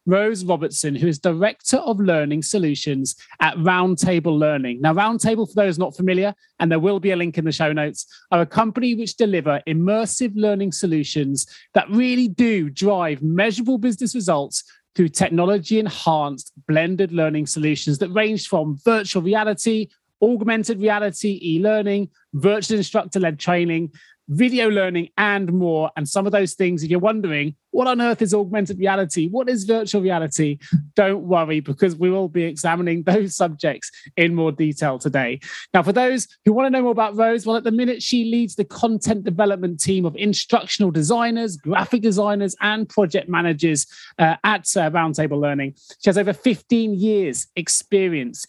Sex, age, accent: male, 30-49, British